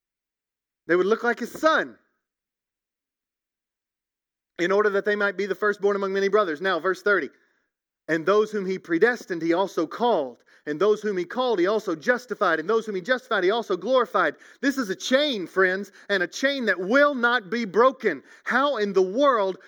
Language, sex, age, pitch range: English, male, 40-59, 200-255 Hz